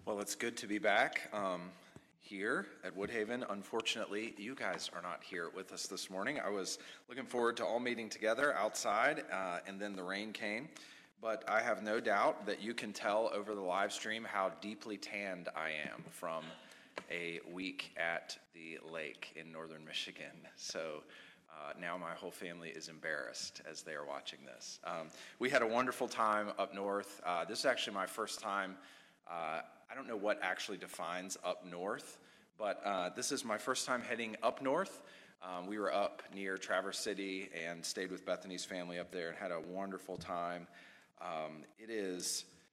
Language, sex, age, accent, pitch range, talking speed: English, male, 30-49, American, 85-105 Hz, 185 wpm